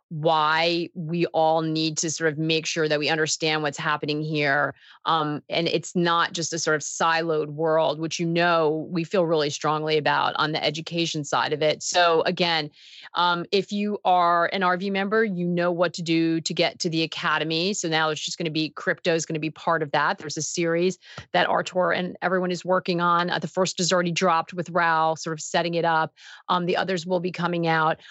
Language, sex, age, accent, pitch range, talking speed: English, female, 30-49, American, 155-185 Hz, 220 wpm